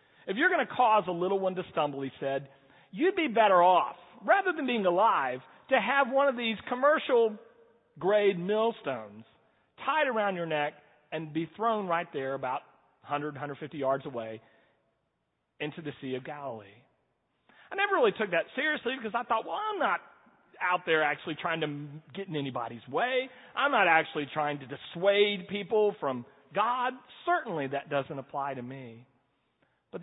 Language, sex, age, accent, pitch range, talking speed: English, male, 40-59, American, 130-195 Hz, 165 wpm